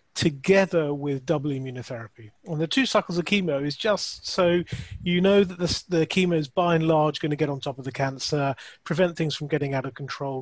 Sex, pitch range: male, 135-165 Hz